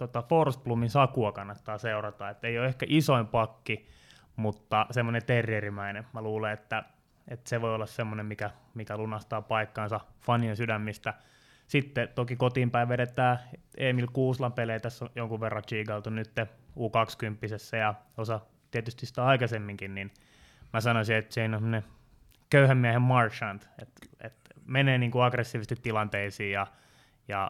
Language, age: Finnish, 20-39